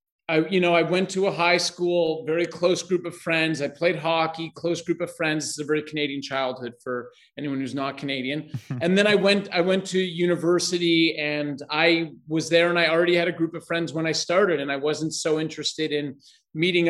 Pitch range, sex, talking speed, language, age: 155-180 Hz, male, 220 wpm, English, 30-49